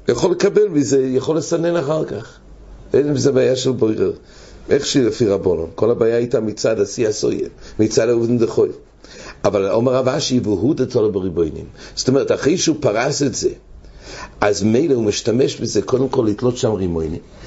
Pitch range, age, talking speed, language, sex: 115-145 Hz, 60-79, 150 wpm, English, male